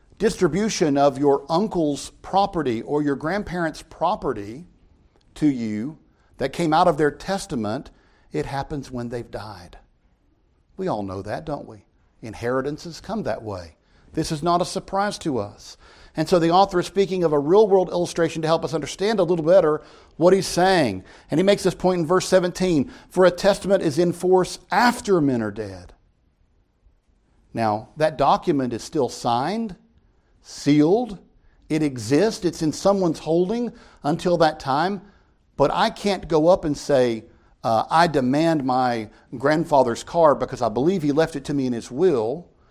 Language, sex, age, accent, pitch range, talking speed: English, male, 50-69, American, 120-175 Hz, 165 wpm